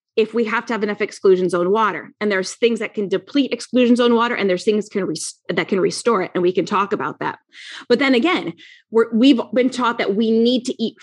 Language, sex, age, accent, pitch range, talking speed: English, female, 20-39, American, 200-260 Hz, 245 wpm